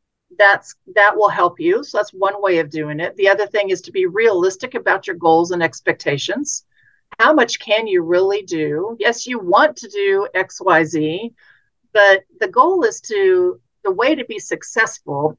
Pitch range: 185-290 Hz